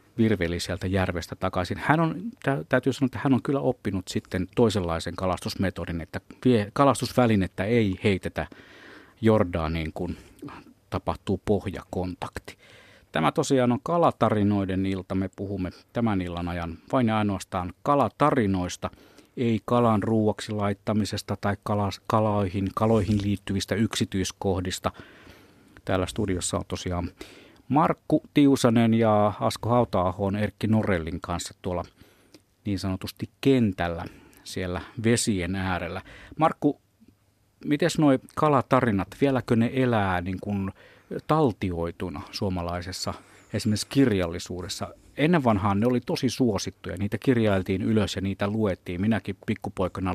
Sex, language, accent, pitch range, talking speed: male, Finnish, native, 95-115 Hz, 110 wpm